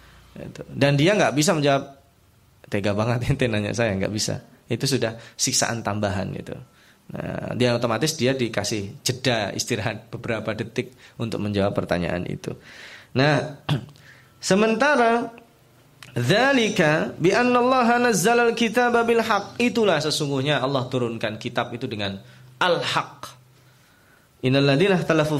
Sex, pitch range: male, 115-155 Hz